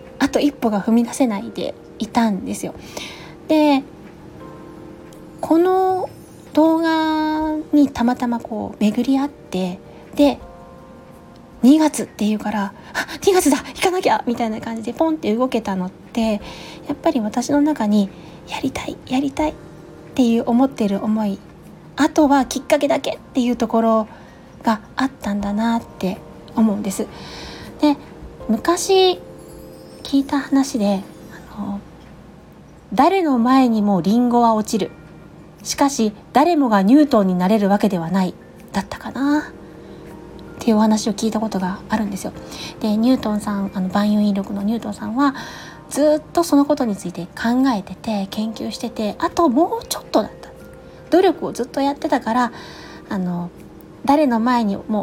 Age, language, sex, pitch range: 20-39, Japanese, female, 210-285 Hz